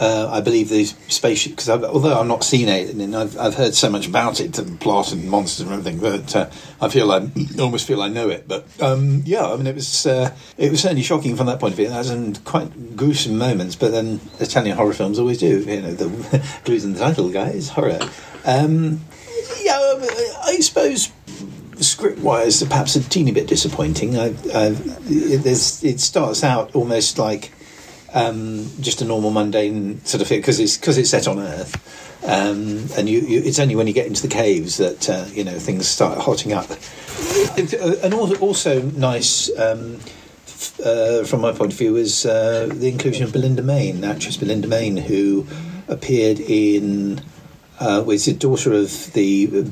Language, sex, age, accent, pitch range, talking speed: English, male, 50-69, British, 105-150 Hz, 195 wpm